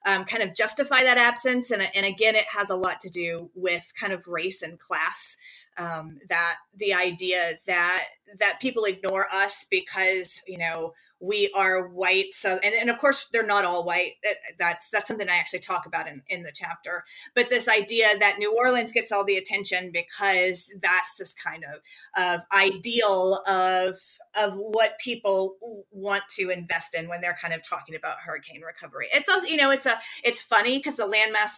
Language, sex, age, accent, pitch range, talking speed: English, female, 30-49, American, 185-230 Hz, 190 wpm